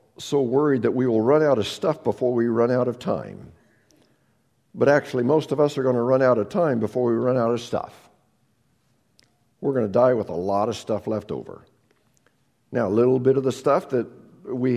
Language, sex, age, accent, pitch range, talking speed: English, male, 50-69, American, 125-180 Hz, 215 wpm